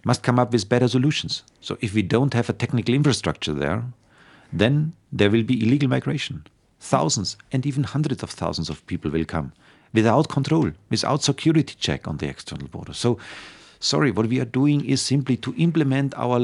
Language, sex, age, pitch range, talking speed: Czech, male, 40-59, 95-135 Hz, 185 wpm